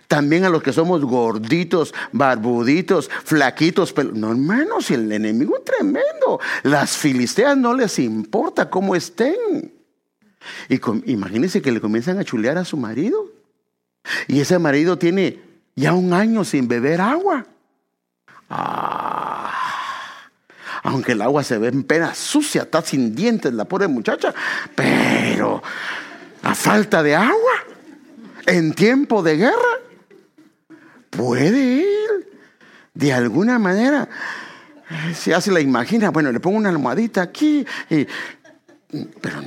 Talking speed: 125 wpm